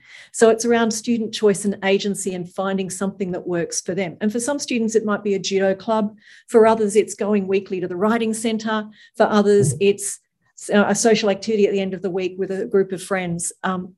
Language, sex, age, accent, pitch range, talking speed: English, female, 40-59, Australian, 195-225 Hz, 220 wpm